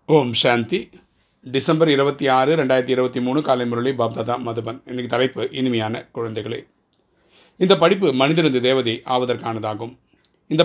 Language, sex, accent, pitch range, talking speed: Tamil, male, native, 115-135 Hz, 90 wpm